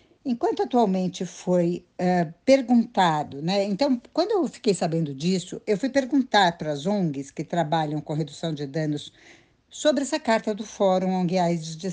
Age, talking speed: 60-79, 150 wpm